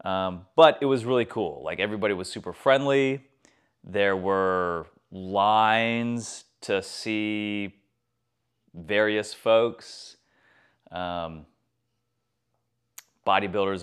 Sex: male